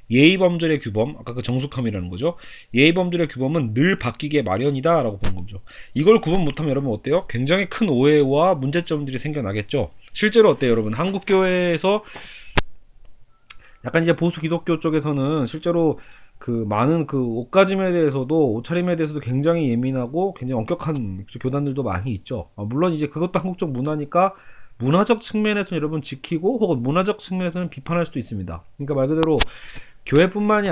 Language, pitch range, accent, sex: Korean, 120-170 Hz, native, male